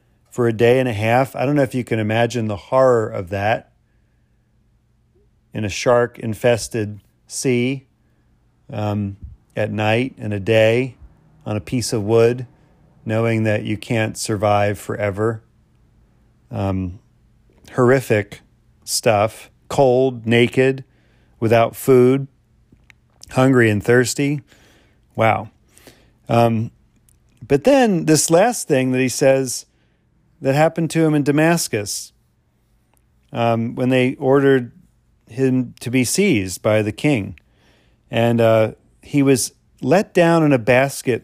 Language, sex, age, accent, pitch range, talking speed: English, male, 40-59, American, 110-130 Hz, 120 wpm